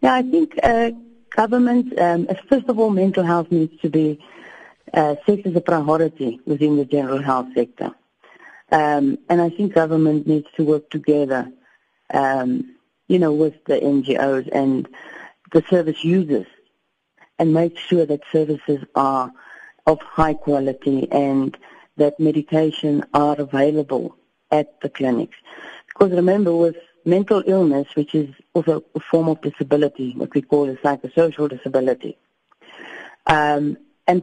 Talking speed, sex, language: 140 wpm, female, English